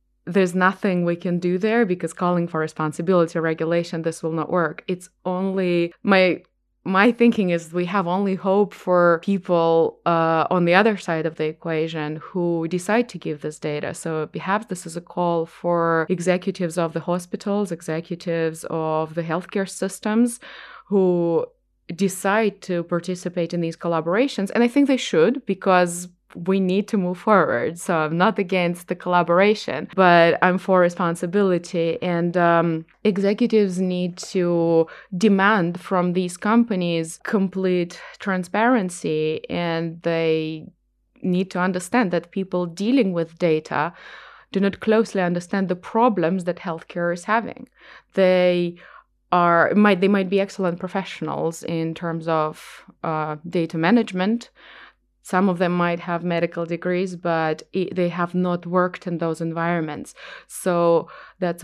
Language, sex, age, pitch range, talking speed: English, female, 20-39, 170-195 Hz, 145 wpm